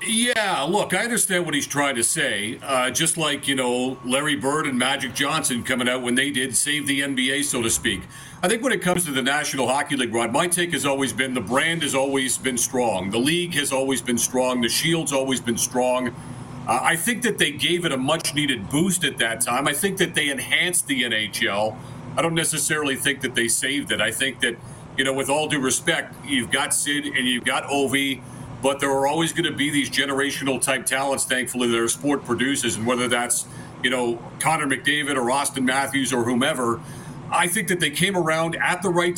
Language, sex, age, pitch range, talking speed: English, male, 40-59, 130-165 Hz, 220 wpm